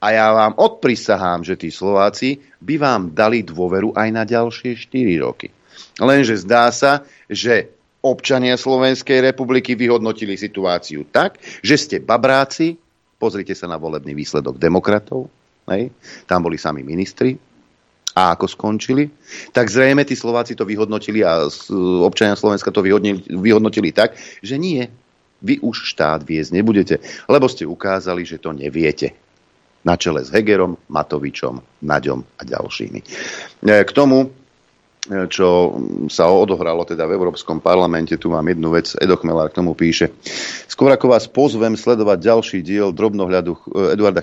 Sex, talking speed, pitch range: male, 140 wpm, 85-115 Hz